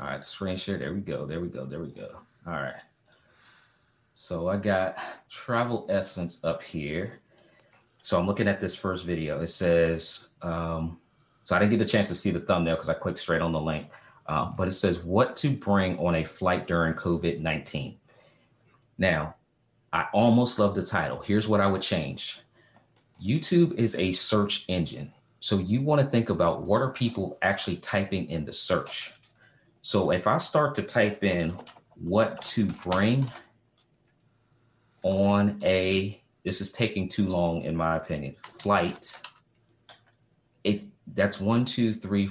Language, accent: English, American